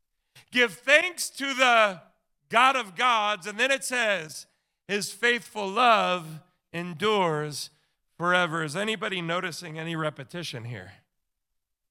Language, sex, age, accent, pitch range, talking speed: English, male, 40-59, American, 155-215 Hz, 110 wpm